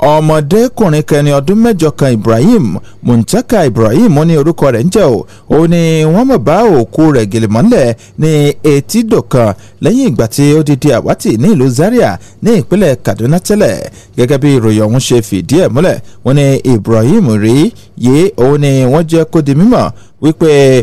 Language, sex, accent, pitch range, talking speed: English, male, Nigerian, 115-160 Hz, 135 wpm